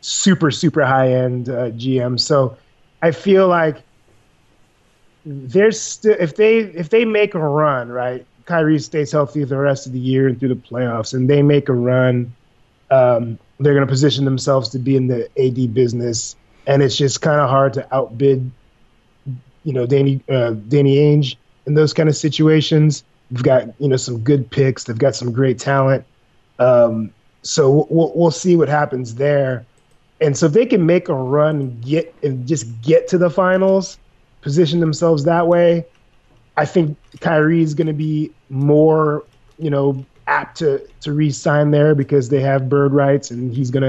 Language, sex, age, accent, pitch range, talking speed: English, male, 30-49, American, 130-165 Hz, 180 wpm